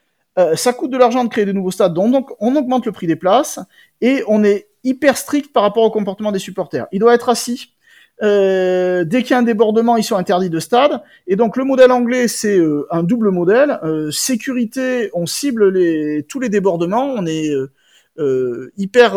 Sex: male